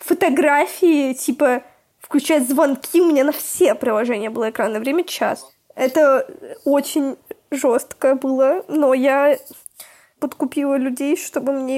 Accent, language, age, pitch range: native, Russian, 20-39, 260-310 Hz